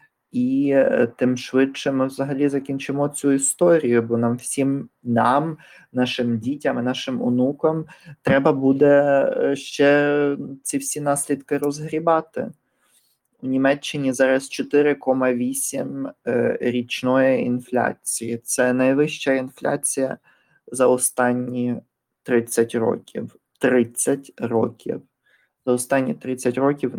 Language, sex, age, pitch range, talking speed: Ukrainian, male, 20-39, 125-145 Hz, 95 wpm